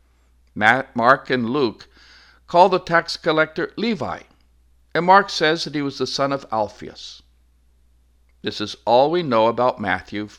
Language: English